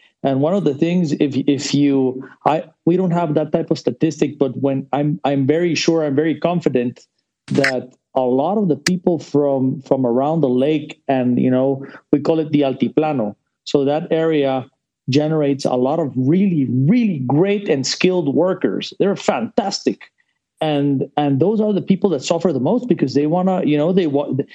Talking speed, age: 190 wpm, 40-59